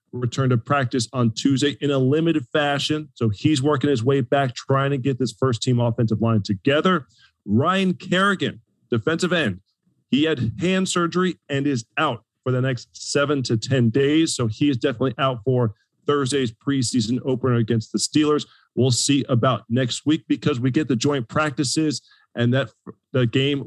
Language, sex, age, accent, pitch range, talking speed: English, male, 40-59, American, 120-155 Hz, 175 wpm